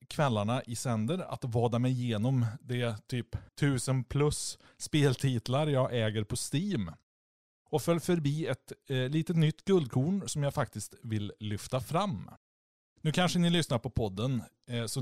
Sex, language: male, Swedish